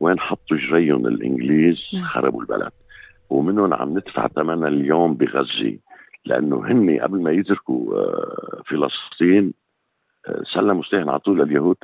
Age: 50-69